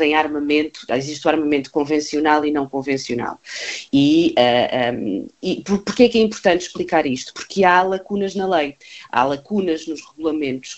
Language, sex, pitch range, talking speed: Portuguese, female, 140-200 Hz, 160 wpm